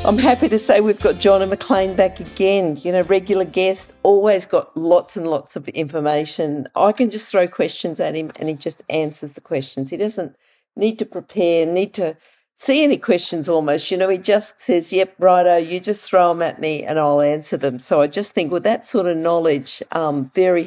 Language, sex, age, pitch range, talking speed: English, female, 50-69, 150-190 Hz, 215 wpm